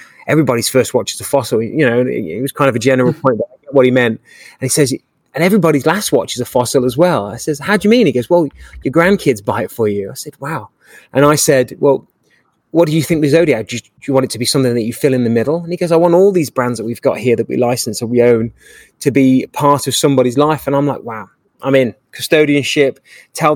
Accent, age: British, 20-39